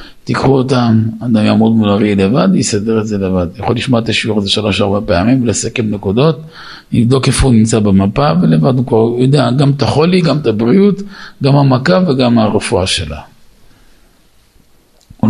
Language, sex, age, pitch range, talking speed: Hebrew, male, 50-69, 105-150 Hz, 155 wpm